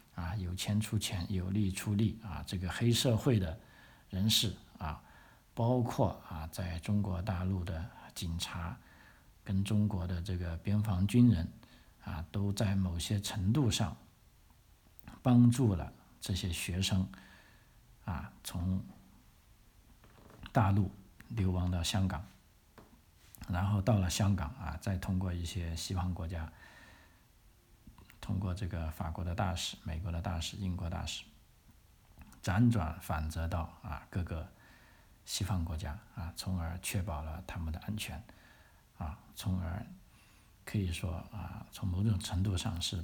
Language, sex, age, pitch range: Chinese, male, 50-69, 85-105 Hz